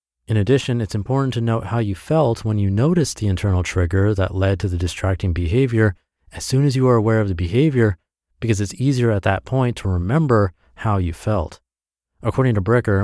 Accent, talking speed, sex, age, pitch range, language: American, 200 wpm, male, 30-49, 90-120 Hz, English